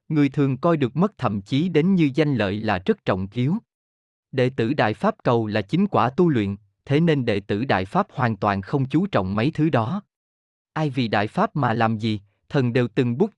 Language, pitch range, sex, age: Vietnamese, 110-155 Hz, male, 20-39